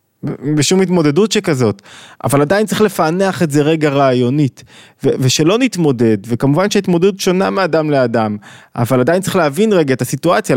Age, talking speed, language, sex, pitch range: 20-39, 150 wpm, Hebrew, male, 130-175 Hz